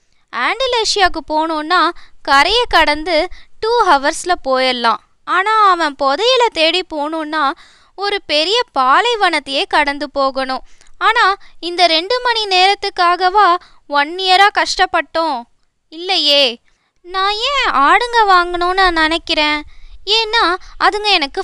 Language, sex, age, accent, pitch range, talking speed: Tamil, female, 20-39, native, 300-405 Hz, 95 wpm